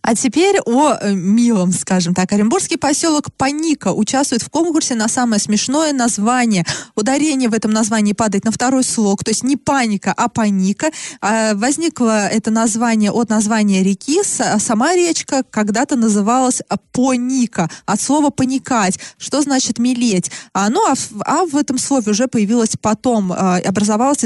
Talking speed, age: 150 wpm, 20-39